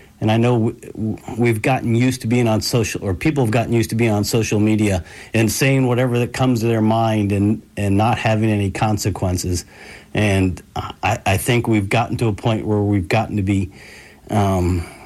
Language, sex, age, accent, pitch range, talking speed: English, male, 50-69, American, 95-115 Hz, 195 wpm